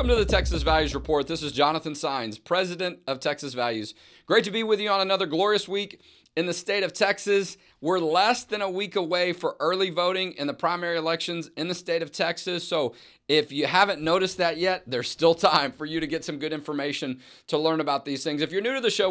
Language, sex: English, male